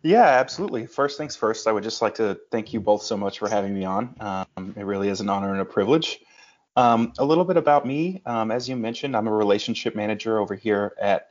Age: 20-39